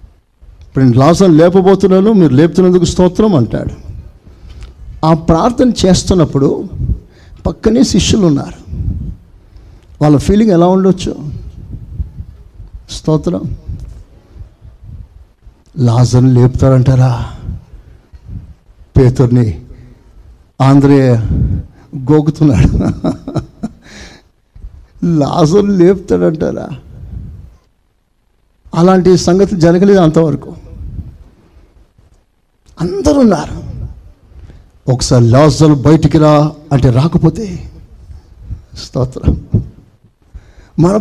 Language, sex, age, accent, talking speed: Telugu, male, 60-79, native, 55 wpm